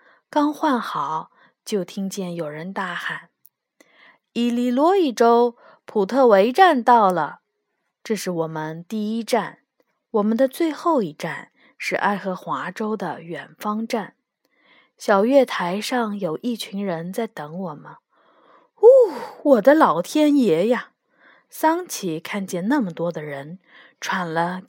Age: 20-39